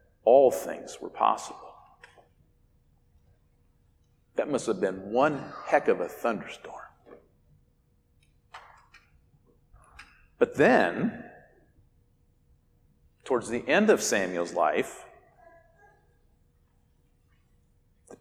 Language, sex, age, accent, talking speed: English, male, 50-69, American, 75 wpm